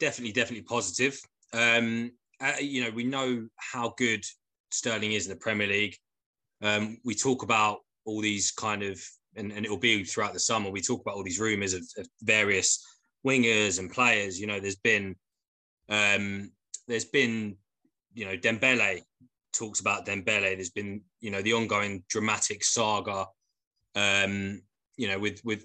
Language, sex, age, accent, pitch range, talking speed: English, male, 20-39, British, 105-125 Hz, 160 wpm